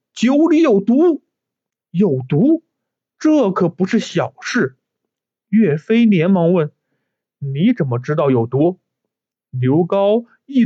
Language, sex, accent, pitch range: Chinese, male, native, 145-235 Hz